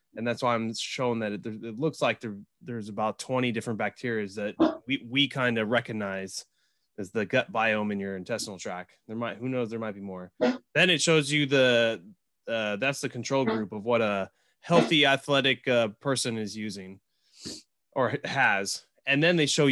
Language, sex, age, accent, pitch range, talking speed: English, male, 20-39, American, 110-140 Hz, 190 wpm